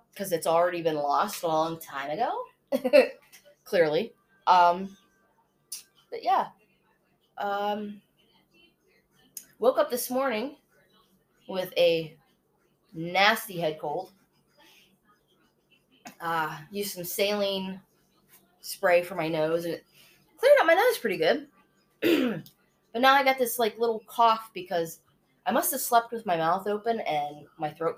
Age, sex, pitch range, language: 20-39, female, 170-245 Hz, English